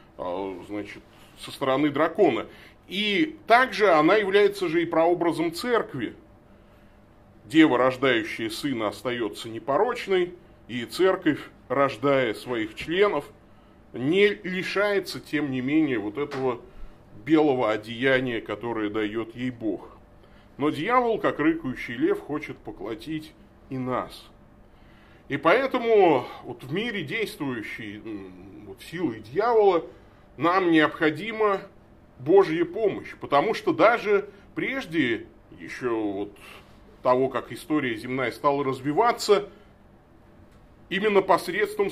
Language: Russian